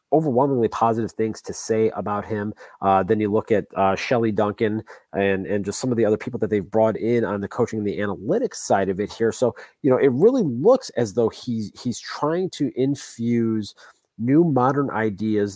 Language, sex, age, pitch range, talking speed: English, male, 30-49, 100-125 Hz, 205 wpm